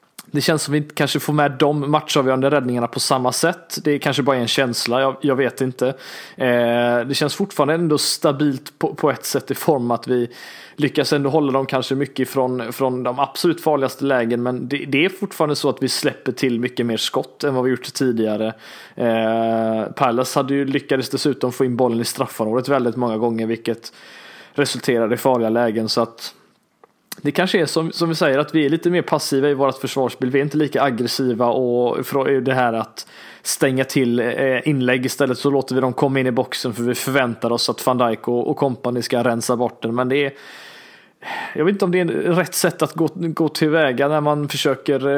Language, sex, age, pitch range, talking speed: Swedish, male, 20-39, 125-145 Hz, 210 wpm